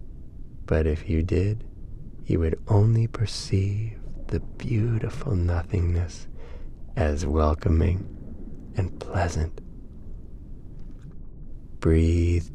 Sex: male